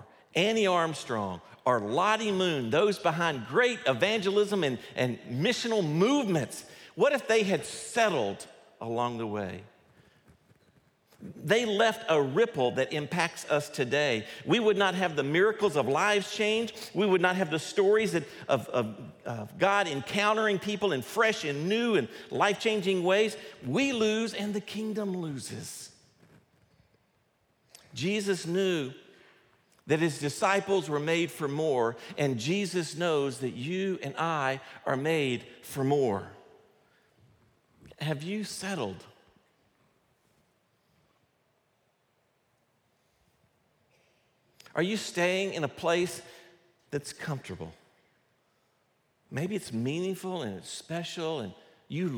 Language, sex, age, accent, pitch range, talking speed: English, male, 50-69, American, 140-200 Hz, 115 wpm